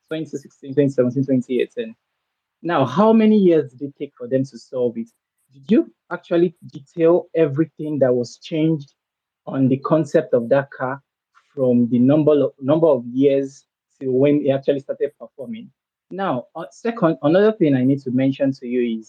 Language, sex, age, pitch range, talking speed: English, male, 20-39, 130-165 Hz, 170 wpm